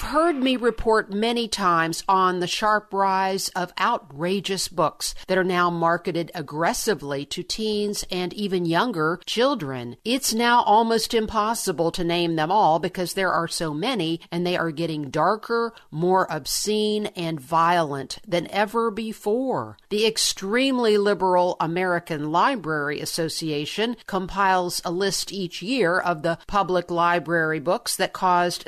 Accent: American